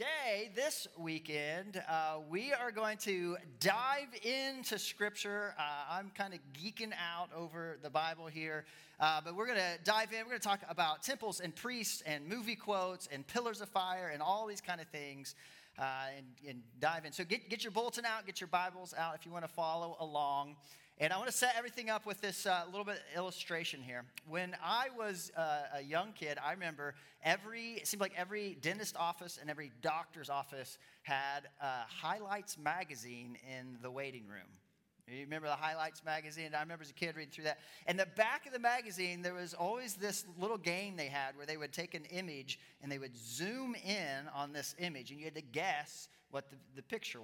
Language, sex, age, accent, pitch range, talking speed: English, male, 40-59, American, 145-195 Hz, 205 wpm